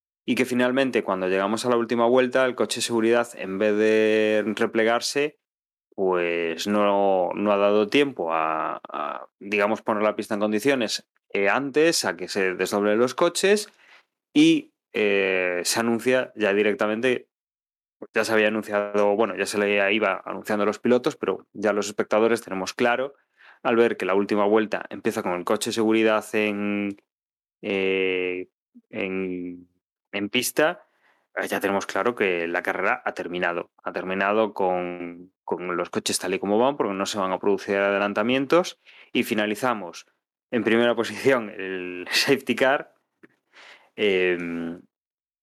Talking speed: 150 wpm